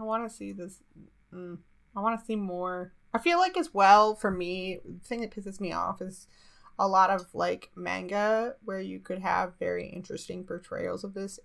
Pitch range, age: 175-200 Hz, 20-39